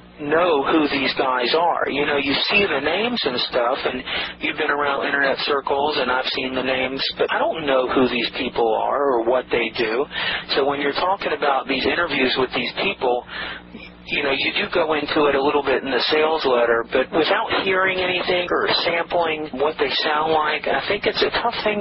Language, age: English, 40-59